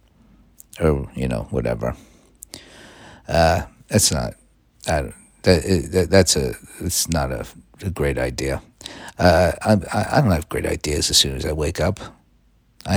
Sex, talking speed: male, 155 wpm